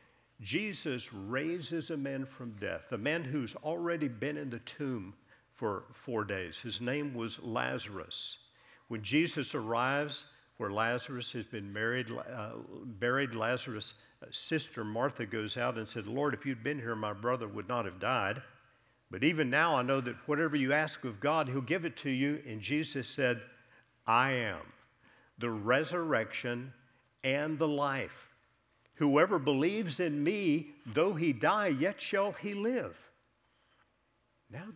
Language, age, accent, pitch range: English, 50-69, American, 115-145 Hz